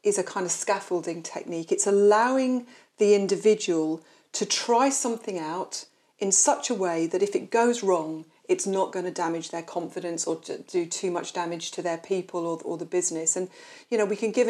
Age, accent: 40-59, British